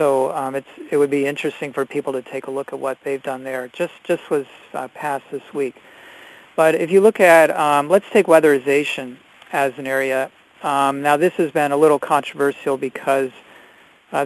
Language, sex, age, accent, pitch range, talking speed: English, male, 40-59, American, 135-155 Hz, 200 wpm